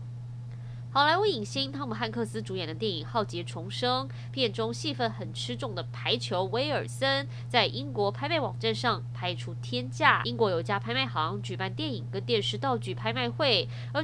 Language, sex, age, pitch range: Chinese, female, 20-39, 115-135 Hz